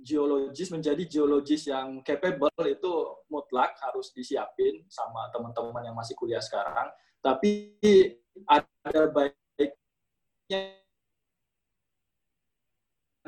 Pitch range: 135-185 Hz